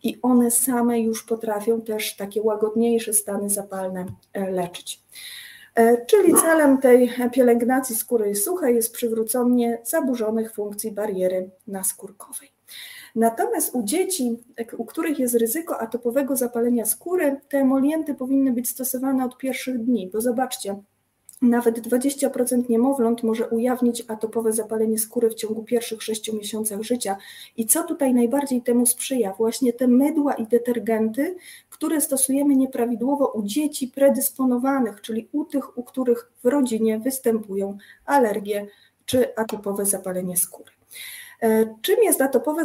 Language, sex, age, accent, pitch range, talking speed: Polish, female, 30-49, native, 225-270 Hz, 125 wpm